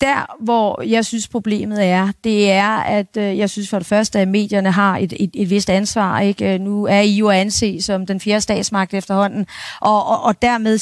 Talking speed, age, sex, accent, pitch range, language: 210 wpm, 40-59, female, native, 195-230 Hz, Danish